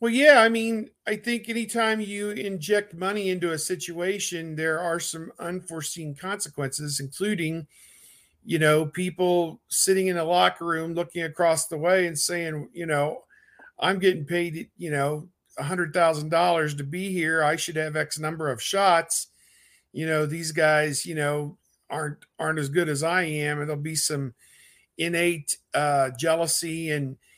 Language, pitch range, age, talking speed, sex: English, 150-175 Hz, 50-69, 165 wpm, male